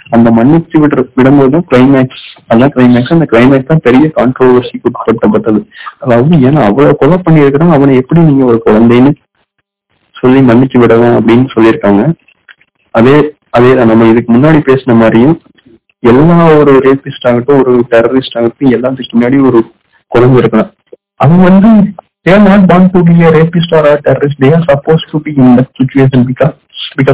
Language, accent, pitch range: Tamil, native, 125-155 Hz